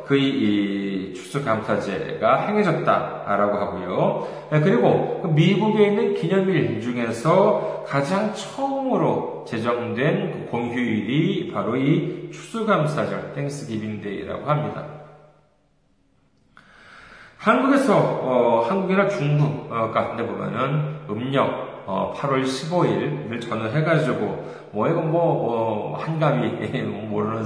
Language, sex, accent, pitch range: Korean, male, native, 115-170 Hz